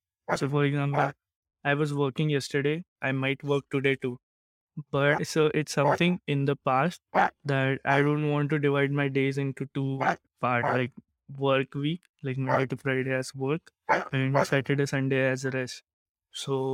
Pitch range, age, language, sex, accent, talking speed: 130-145 Hz, 20-39, English, male, Indian, 160 wpm